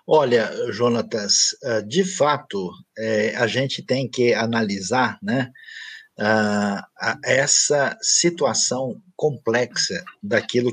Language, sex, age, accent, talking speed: Portuguese, male, 50-69, Brazilian, 80 wpm